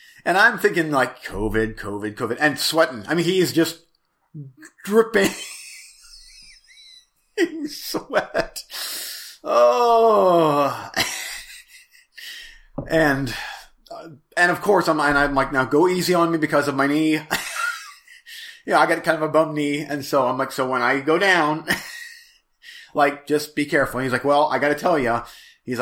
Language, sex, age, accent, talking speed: English, male, 30-49, American, 155 wpm